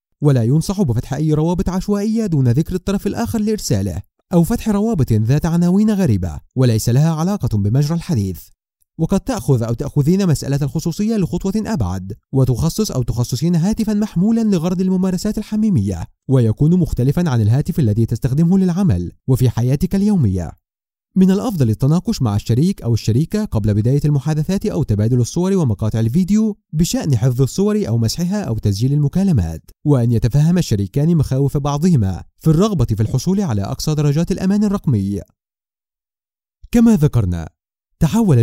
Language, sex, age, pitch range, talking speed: Arabic, male, 30-49, 115-190 Hz, 135 wpm